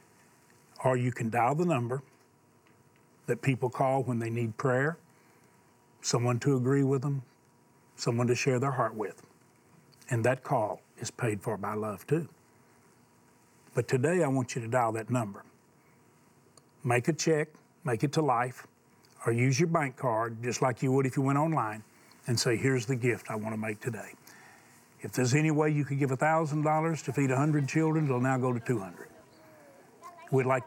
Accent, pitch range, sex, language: American, 120-145 Hz, male, English